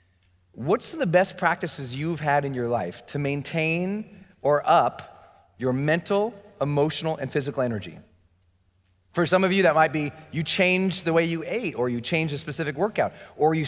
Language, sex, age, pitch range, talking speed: English, male, 30-49, 115-170 Hz, 175 wpm